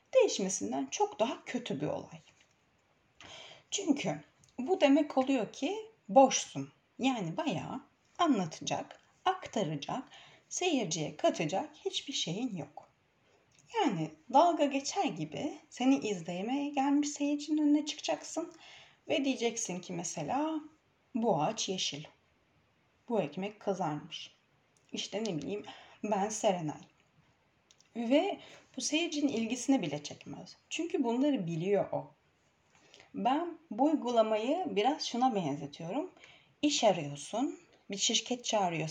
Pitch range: 195-295 Hz